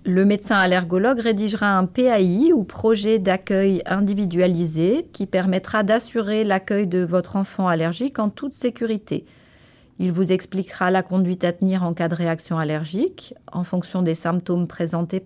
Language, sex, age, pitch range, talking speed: French, female, 30-49, 180-220 Hz, 150 wpm